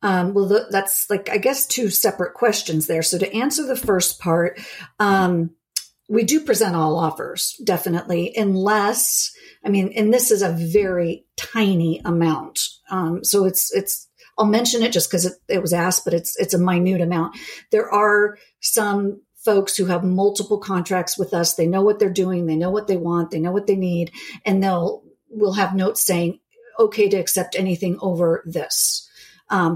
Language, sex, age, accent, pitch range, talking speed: English, female, 50-69, American, 180-210 Hz, 180 wpm